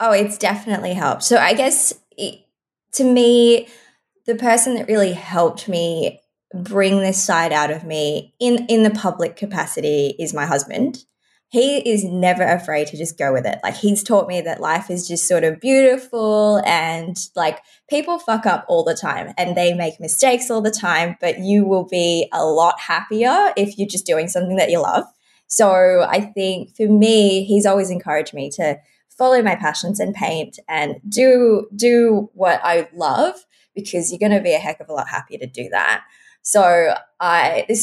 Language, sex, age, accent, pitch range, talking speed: English, female, 20-39, Australian, 170-225 Hz, 185 wpm